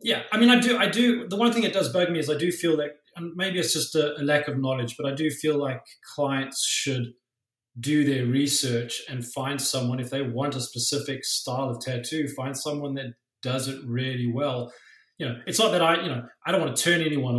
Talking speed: 240 wpm